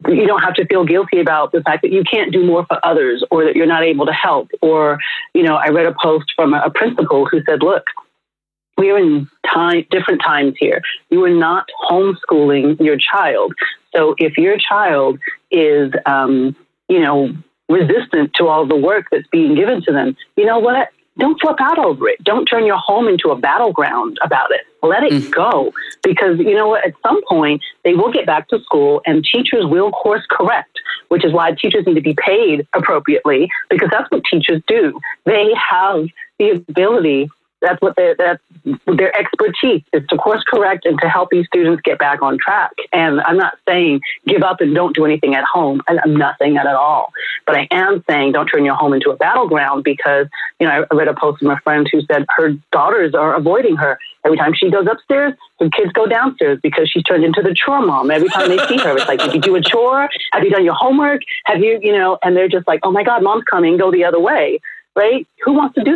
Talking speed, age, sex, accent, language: 220 wpm, 40-59, female, American, English